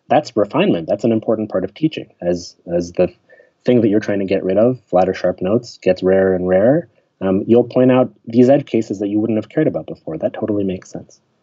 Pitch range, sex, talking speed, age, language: 95-125 Hz, male, 230 wpm, 30-49, English